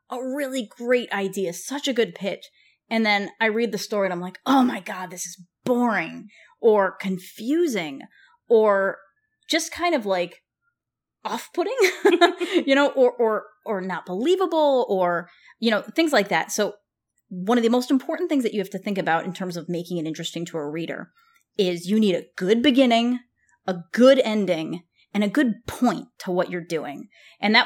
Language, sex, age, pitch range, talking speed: English, female, 30-49, 185-265 Hz, 185 wpm